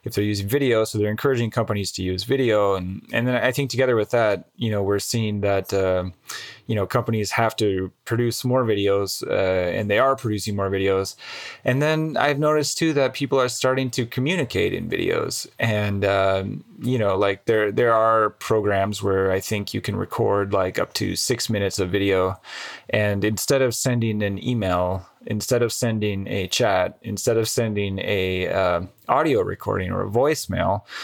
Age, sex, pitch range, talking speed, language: 20-39, male, 100-125 Hz, 185 wpm, English